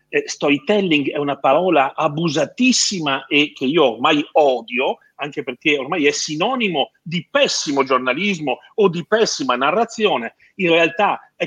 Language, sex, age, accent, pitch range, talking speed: Italian, male, 40-59, native, 130-190 Hz, 130 wpm